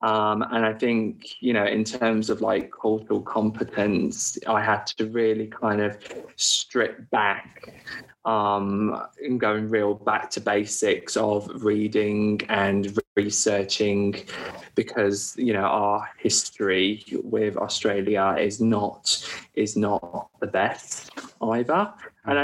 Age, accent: 20-39, British